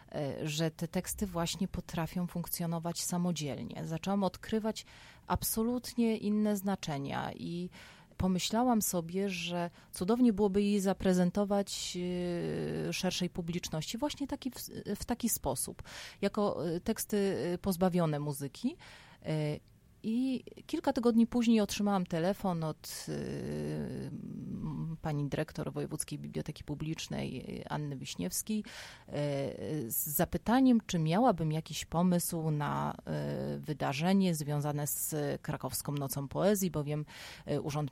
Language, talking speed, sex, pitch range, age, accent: Polish, 95 wpm, female, 145-200 Hz, 30-49, native